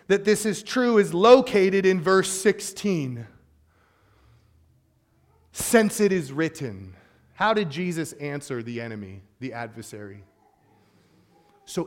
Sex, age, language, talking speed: male, 30-49, English, 110 wpm